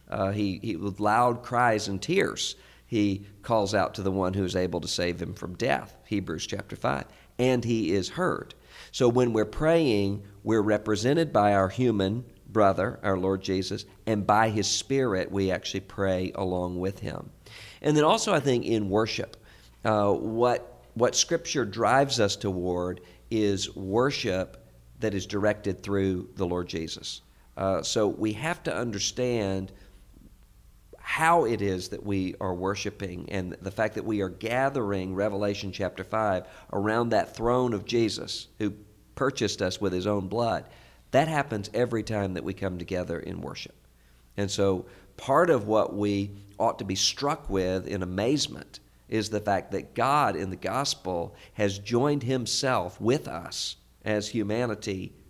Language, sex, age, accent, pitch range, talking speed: English, male, 50-69, American, 95-115 Hz, 160 wpm